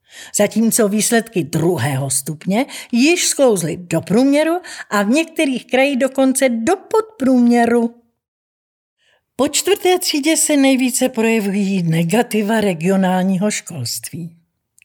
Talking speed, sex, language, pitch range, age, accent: 95 wpm, female, Czech, 185-245 Hz, 50-69, native